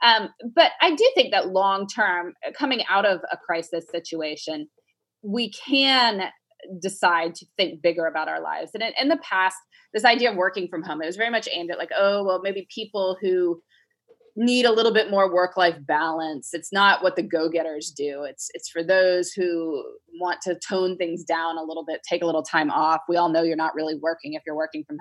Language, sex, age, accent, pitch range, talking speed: English, female, 20-39, American, 160-200 Hz, 210 wpm